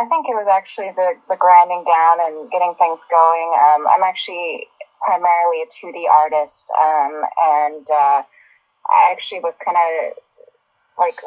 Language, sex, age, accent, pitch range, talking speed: English, female, 20-39, American, 155-210 Hz, 155 wpm